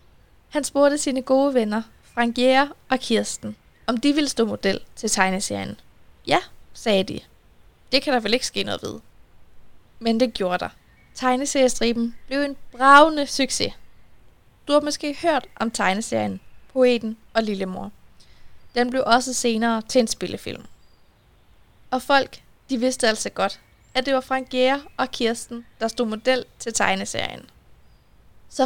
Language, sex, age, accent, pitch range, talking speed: Danish, female, 20-39, native, 225-265 Hz, 145 wpm